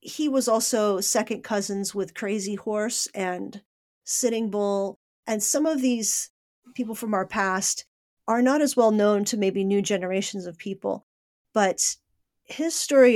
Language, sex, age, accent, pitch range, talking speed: English, female, 40-59, American, 195-235 Hz, 150 wpm